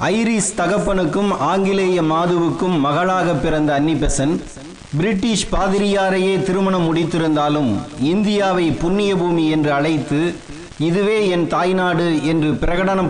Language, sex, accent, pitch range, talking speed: Tamil, male, native, 155-190 Hz, 90 wpm